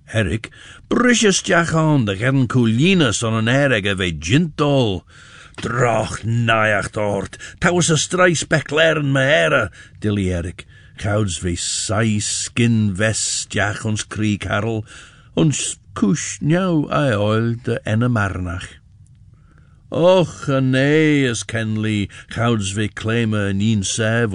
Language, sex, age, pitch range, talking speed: English, male, 60-79, 105-145 Hz, 110 wpm